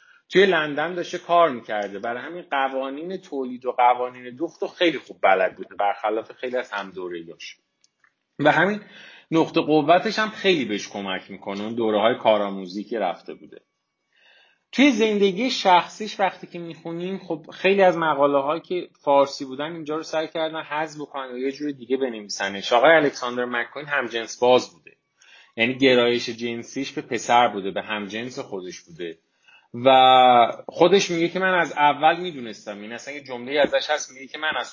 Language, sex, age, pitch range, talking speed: Persian, male, 30-49, 125-175 Hz, 165 wpm